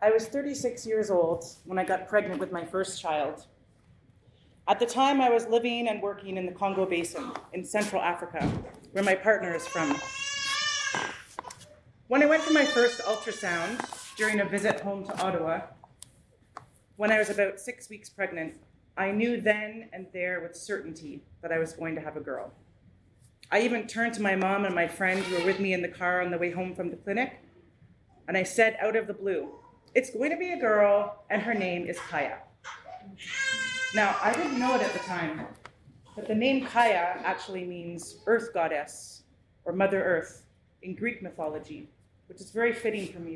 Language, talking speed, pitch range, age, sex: English, 190 wpm, 170-225 Hz, 30-49, female